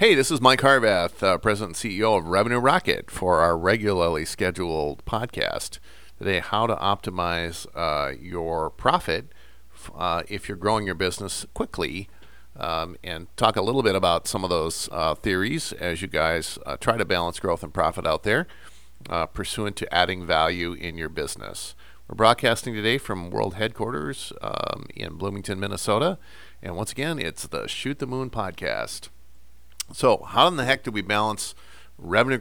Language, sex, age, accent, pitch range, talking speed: English, male, 40-59, American, 85-110 Hz, 170 wpm